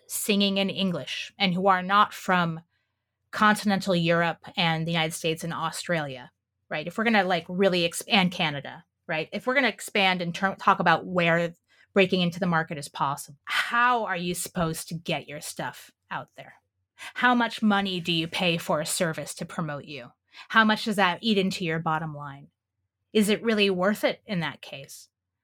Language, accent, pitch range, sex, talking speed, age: English, American, 165-210 Hz, female, 190 wpm, 30-49